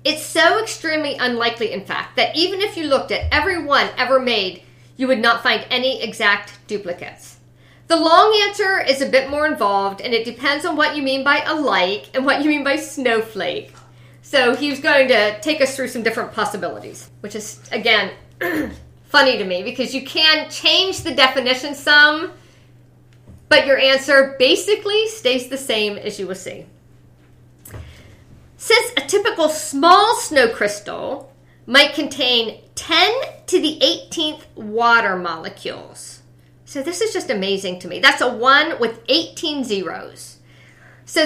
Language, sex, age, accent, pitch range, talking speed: English, female, 50-69, American, 220-310 Hz, 155 wpm